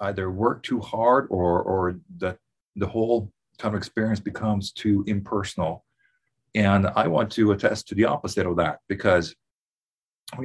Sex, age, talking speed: male, 40-59, 155 wpm